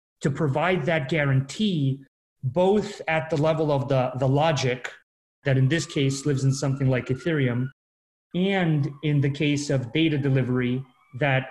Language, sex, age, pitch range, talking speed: English, male, 30-49, 135-165 Hz, 150 wpm